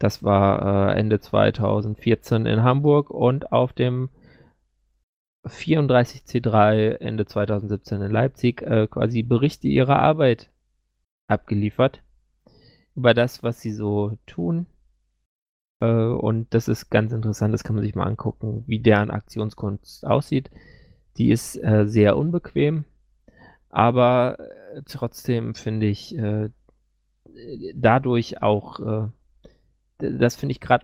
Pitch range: 105-125 Hz